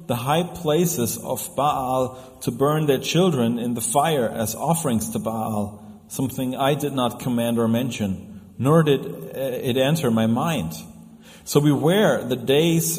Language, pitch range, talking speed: English, 115-140 Hz, 150 wpm